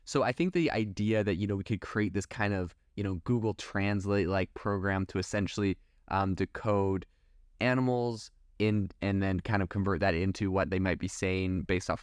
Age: 20-39